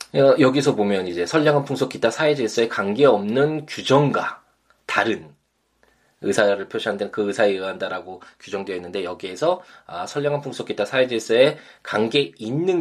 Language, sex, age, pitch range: Korean, male, 20-39, 100-135 Hz